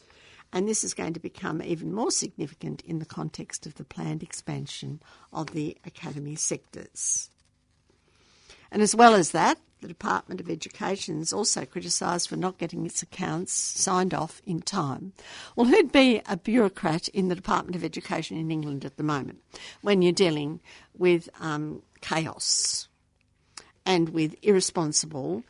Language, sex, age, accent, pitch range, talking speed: English, female, 60-79, Australian, 155-190 Hz, 155 wpm